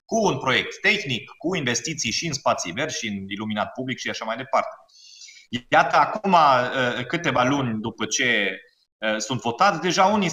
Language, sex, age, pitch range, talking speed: Romanian, male, 30-49, 110-160 Hz, 165 wpm